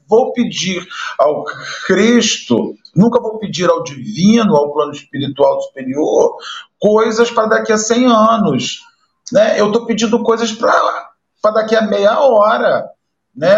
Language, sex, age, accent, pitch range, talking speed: Portuguese, male, 50-69, Brazilian, 165-235 Hz, 140 wpm